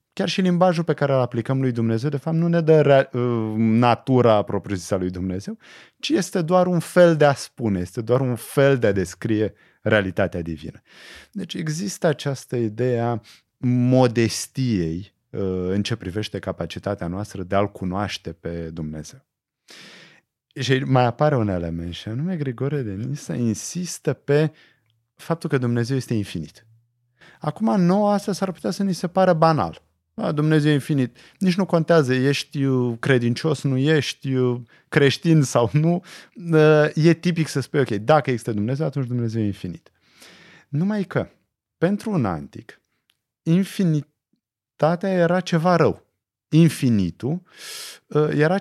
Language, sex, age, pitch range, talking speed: Romanian, male, 30-49, 110-165 Hz, 145 wpm